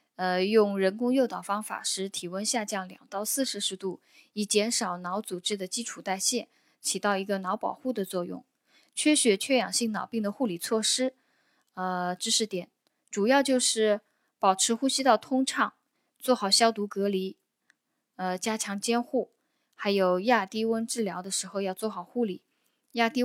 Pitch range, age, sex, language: 190-245 Hz, 10-29, female, Chinese